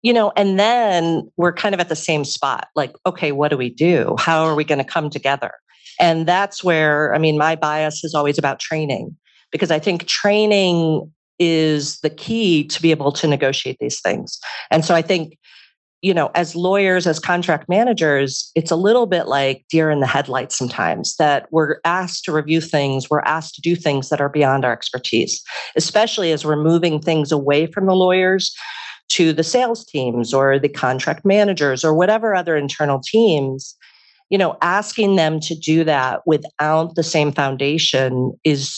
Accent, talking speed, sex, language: American, 185 wpm, female, English